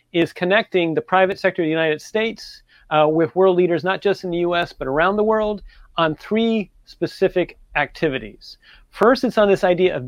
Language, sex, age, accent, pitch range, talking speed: English, male, 30-49, American, 150-190 Hz, 190 wpm